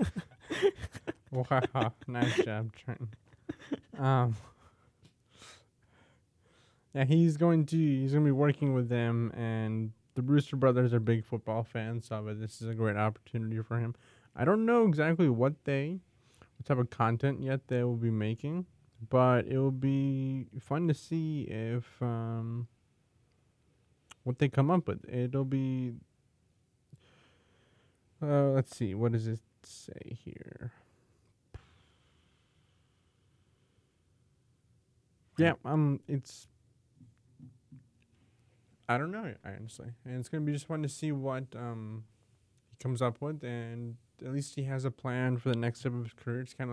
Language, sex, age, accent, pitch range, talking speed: English, male, 20-39, American, 115-135 Hz, 140 wpm